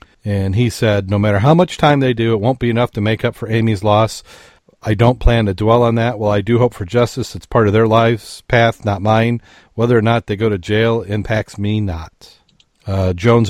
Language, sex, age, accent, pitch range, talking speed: English, male, 40-59, American, 100-120 Hz, 235 wpm